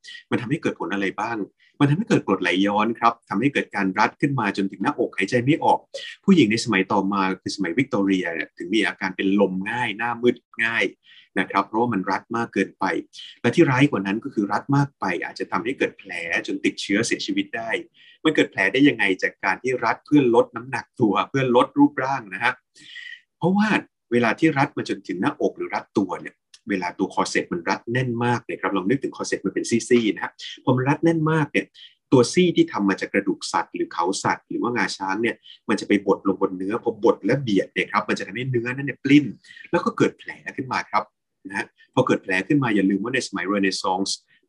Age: 30-49